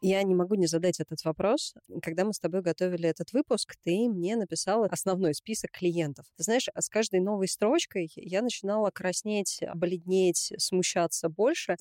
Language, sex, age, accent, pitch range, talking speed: Russian, female, 20-39, native, 170-210 Hz, 165 wpm